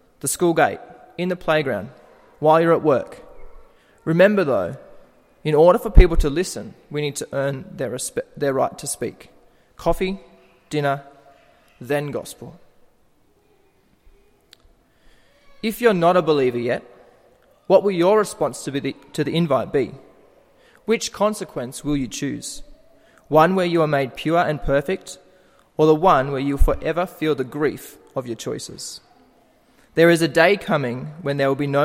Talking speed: 155 wpm